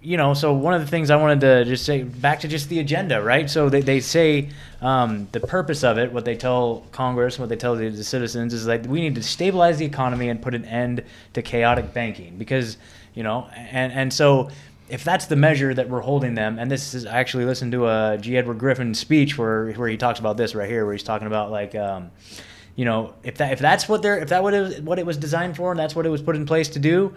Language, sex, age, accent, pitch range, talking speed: English, male, 20-39, American, 120-155 Hz, 260 wpm